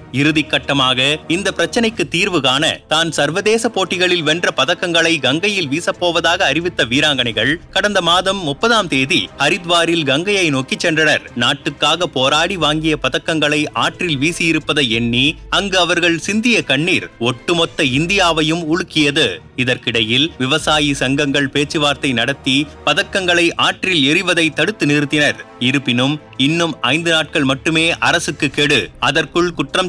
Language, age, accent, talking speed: Tamil, 30-49, native, 110 wpm